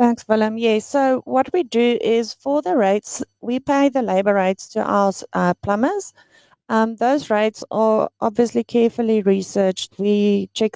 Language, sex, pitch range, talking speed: English, female, 195-240 Hz, 160 wpm